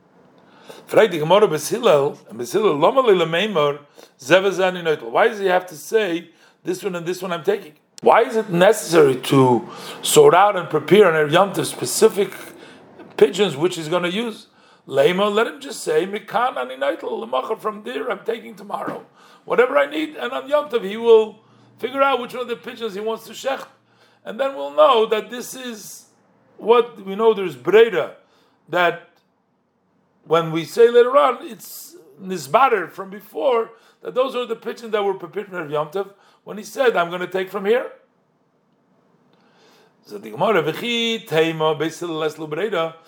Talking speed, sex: 140 wpm, male